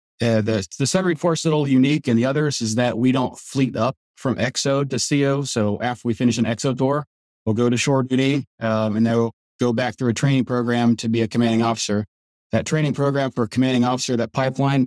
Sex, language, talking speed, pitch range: male, English, 225 wpm, 115-130 Hz